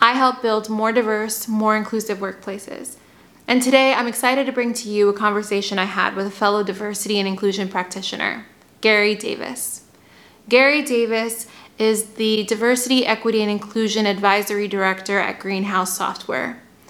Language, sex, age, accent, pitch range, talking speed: English, female, 20-39, American, 210-240 Hz, 150 wpm